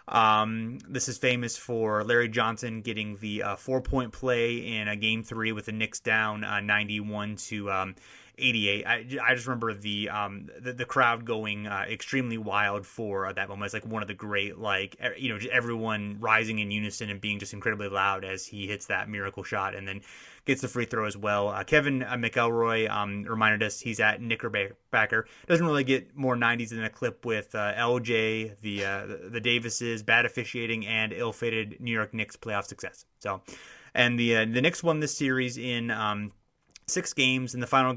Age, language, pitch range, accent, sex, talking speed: 30-49, English, 105-125 Hz, American, male, 200 wpm